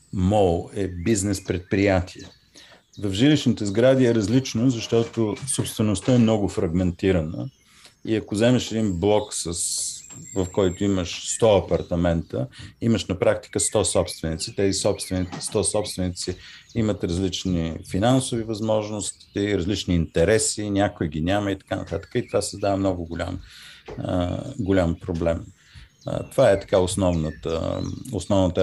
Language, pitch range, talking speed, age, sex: Bulgarian, 95-115 Hz, 120 wpm, 40-59, male